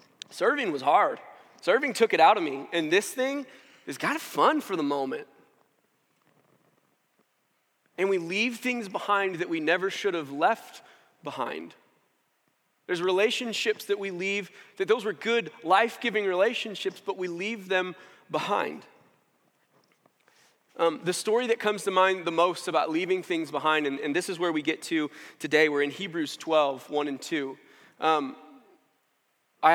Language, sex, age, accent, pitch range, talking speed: English, male, 30-49, American, 155-220 Hz, 155 wpm